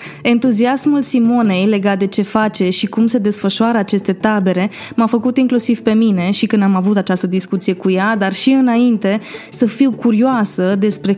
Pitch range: 195-240 Hz